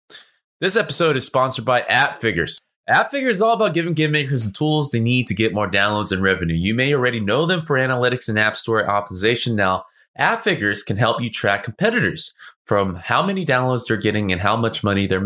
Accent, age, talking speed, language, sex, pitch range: American, 20-39, 205 wpm, English, male, 100-140 Hz